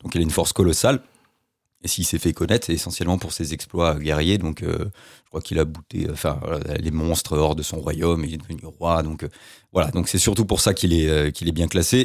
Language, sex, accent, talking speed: French, male, French, 255 wpm